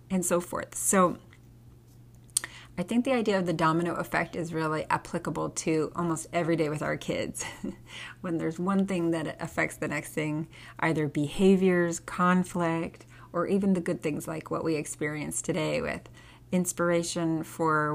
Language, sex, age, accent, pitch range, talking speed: English, female, 30-49, American, 150-175 Hz, 155 wpm